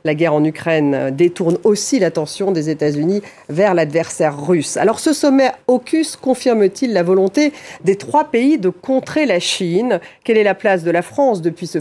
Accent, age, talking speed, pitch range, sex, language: French, 40-59, 180 wpm, 170-235 Hz, female, French